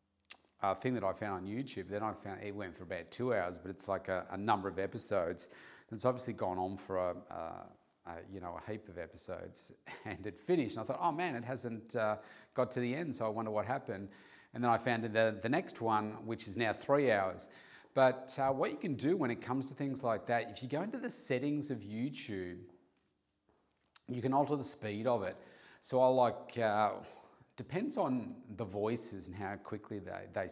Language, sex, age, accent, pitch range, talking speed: English, male, 40-59, Australian, 100-125 Hz, 225 wpm